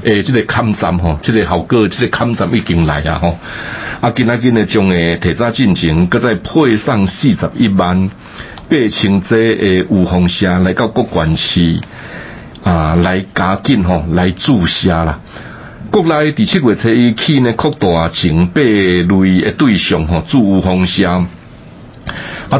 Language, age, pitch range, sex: Chinese, 60-79, 85-115 Hz, male